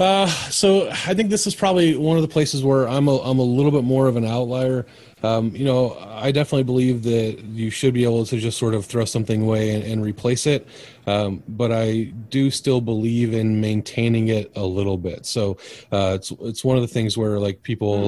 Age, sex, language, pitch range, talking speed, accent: 30-49, male, English, 105-125 Hz, 220 wpm, American